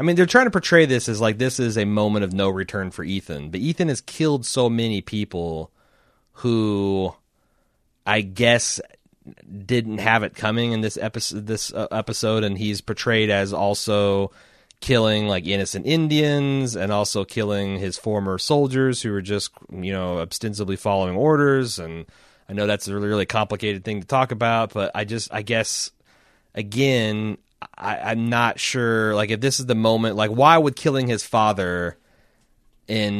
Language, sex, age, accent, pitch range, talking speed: English, male, 30-49, American, 95-115 Hz, 170 wpm